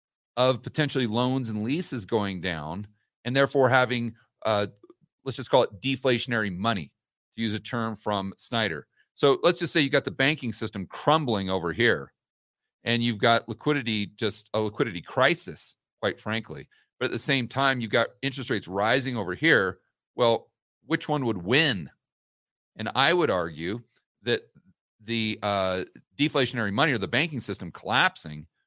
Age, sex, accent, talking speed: 40-59, male, American, 160 wpm